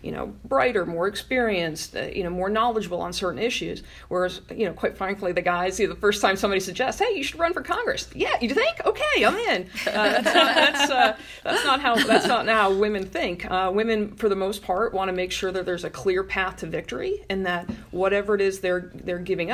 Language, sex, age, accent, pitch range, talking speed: English, female, 40-59, American, 175-210 Hz, 235 wpm